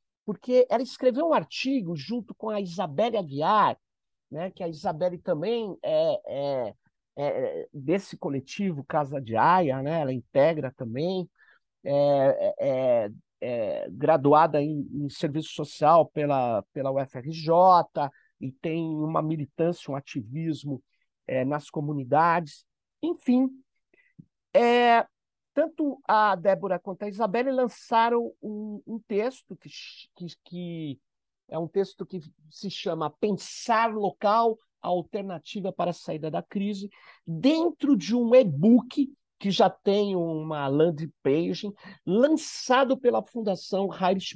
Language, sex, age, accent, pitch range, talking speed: Portuguese, male, 50-69, Brazilian, 155-235 Hz, 120 wpm